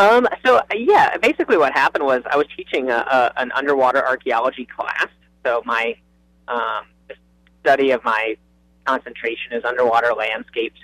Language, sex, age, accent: English, male, 30-49, American